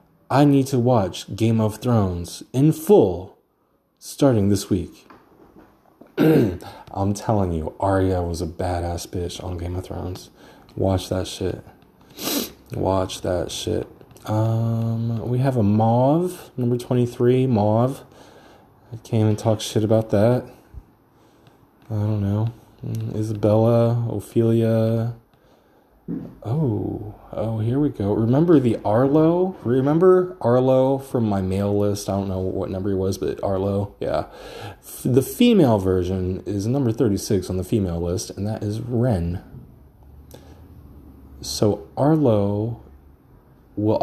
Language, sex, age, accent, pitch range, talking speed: English, male, 20-39, American, 95-120 Hz, 125 wpm